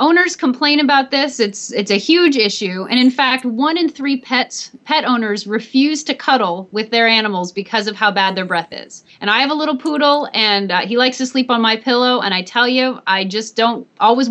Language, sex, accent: English, female, American